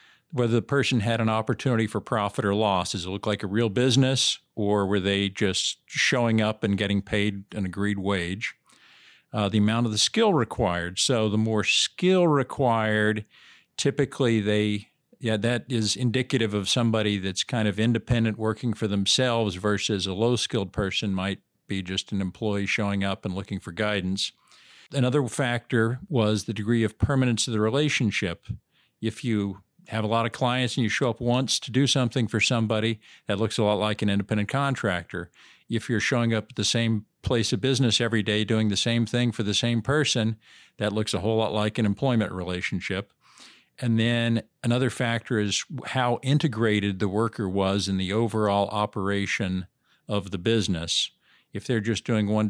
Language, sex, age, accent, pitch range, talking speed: English, male, 50-69, American, 100-120 Hz, 180 wpm